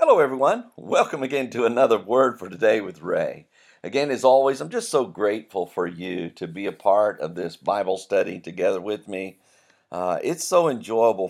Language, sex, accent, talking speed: English, male, American, 185 wpm